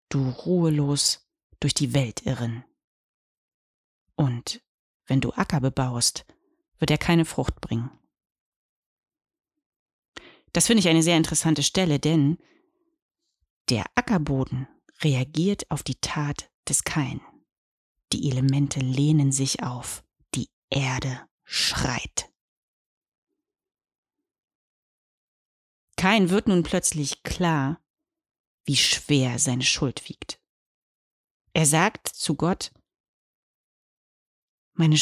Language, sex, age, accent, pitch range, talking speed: German, female, 30-49, German, 135-185 Hz, 95 wpm